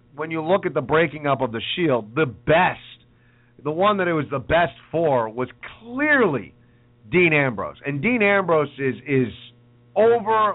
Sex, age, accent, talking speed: male, 40-59, American, 170 wpm